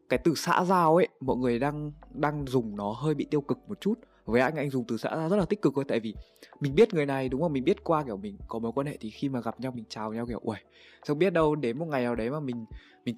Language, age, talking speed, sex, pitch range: Vietnamese, 20-39, 305 wpm, male, 115-165 Hz